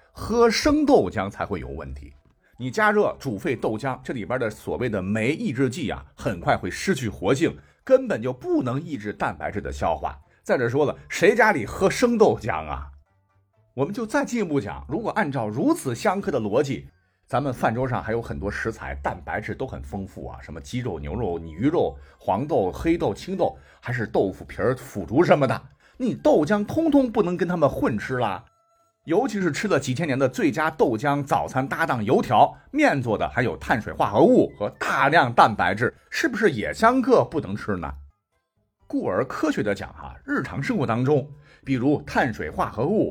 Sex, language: male, Chinese